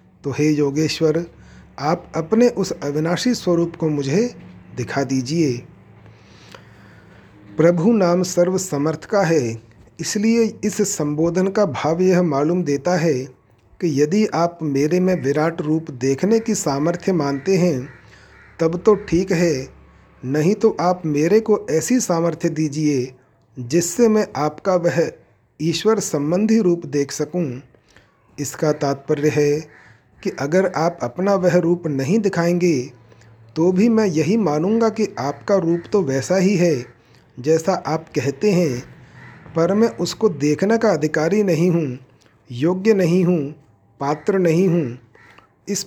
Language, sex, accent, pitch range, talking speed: Hindi, male, native, 140-185 Hz, 135 wpm